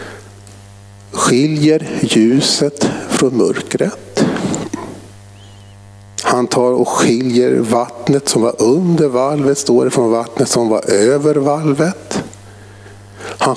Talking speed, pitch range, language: 95 wpm, 100-125 Hz, Swedish